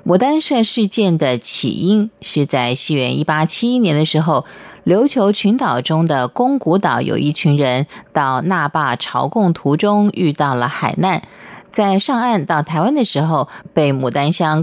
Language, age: Chinese, 30-49